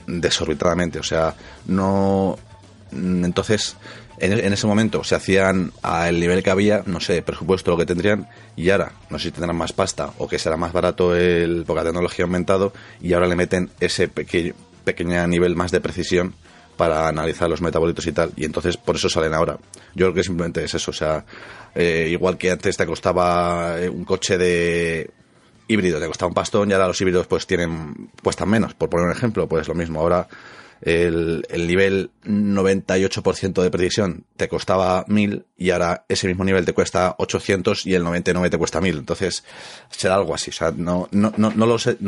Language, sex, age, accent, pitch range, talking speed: Spanish, male, 30-49, Spanish, 85-100 Hz, 195 wpm